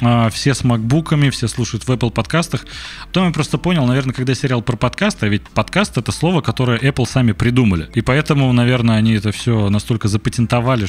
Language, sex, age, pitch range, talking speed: Russian, male, 20-39, 105-130 Hz, 195 wpm